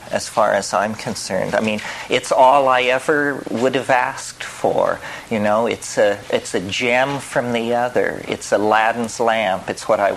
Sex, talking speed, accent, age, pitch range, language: male, 185 wpm, American, 40-59, 100-115 Hz, English